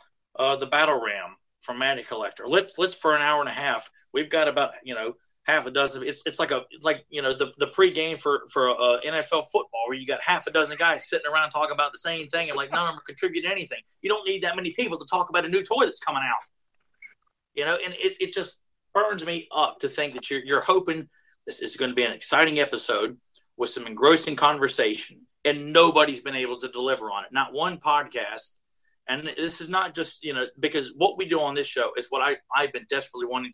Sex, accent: male, American